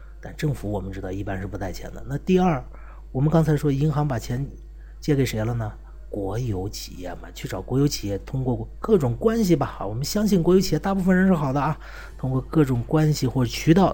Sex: male